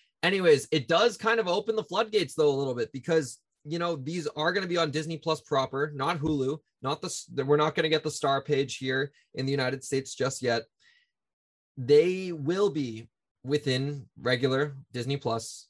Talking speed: 190 wpm